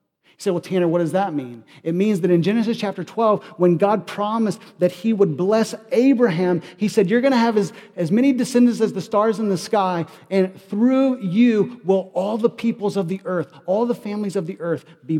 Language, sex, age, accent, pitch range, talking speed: English, male, 40-59, American, 165-215 Hz, 220 wpm